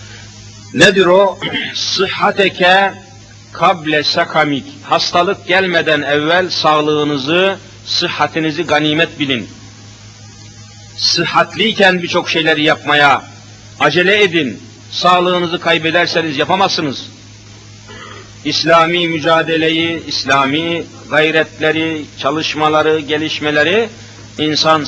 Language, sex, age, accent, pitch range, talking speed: Turkish, male, 50-69, native, 110-165 Hz, 65 wpm